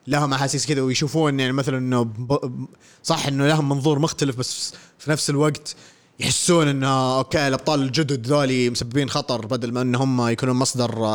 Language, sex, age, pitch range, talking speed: Arabic, male, 20-39, 125-160 Hz, 155 wpm